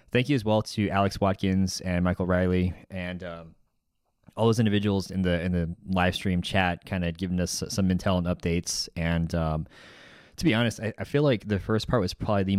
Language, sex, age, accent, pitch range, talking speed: English, male, 20-39, American, 90-100 Hz, 215 wpm